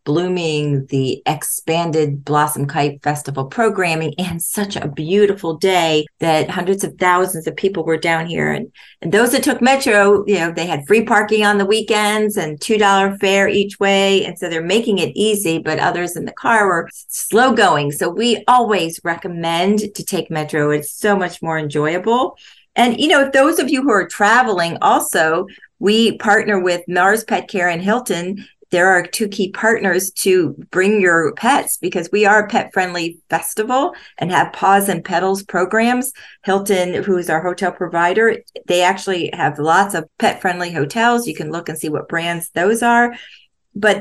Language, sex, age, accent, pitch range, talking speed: English, female, 40-59, American, 170-215 Hz, 175 wpm